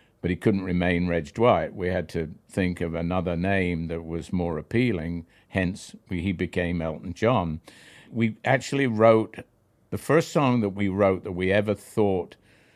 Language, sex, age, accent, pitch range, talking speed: English, male, 50-69, British, 90-110 Hz, 165 wpm